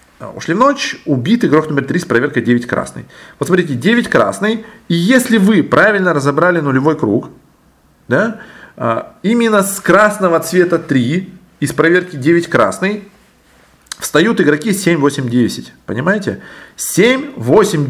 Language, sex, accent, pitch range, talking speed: Russian, male, native, 125-185 Hz, 135 wpm